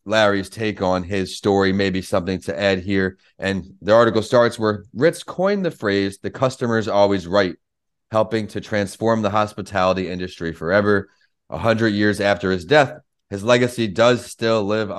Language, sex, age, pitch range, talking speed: English, male, 30-49, 95-115 Hz, 165 wpm